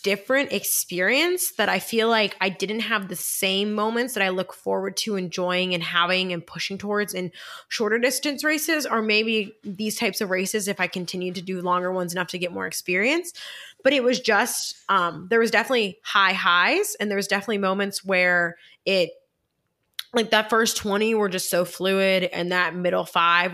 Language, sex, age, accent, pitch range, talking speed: English, female, 20-39, American, 180-230 Hz, 185 wpm